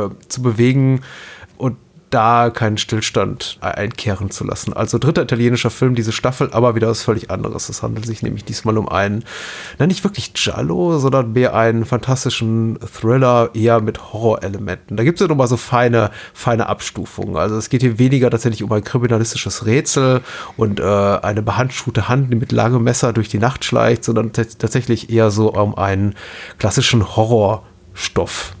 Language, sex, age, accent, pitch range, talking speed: German, male, 30-49, German, 110-130 Hz, 165 wpm